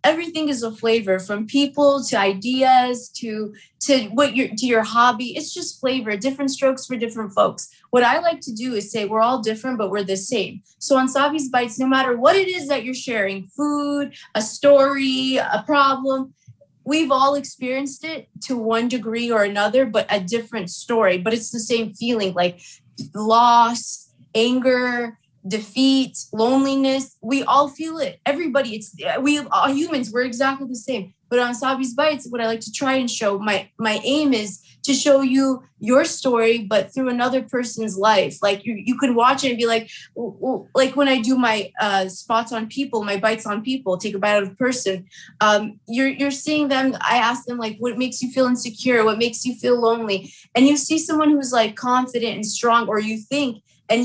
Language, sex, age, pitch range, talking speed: English, female, 20-39, 220-270 Hz, 195 wpm